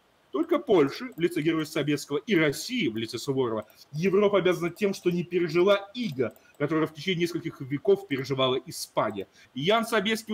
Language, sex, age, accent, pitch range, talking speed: Russian, male, 30-49, native, 165-225 Hz, 155 wpm